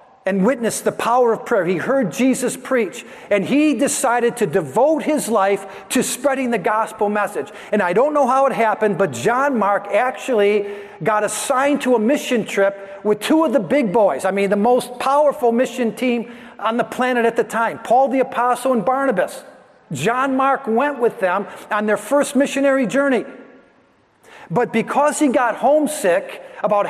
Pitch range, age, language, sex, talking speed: 220-280 Hz, 50-69, English, male, 175 wpm